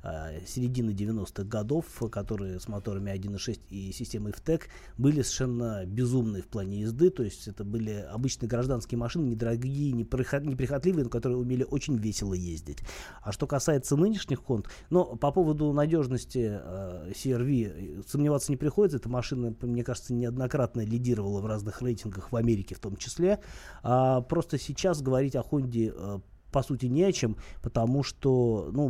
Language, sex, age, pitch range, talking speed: Russian, male, 30-49, 105-135 Hz, 155 wpm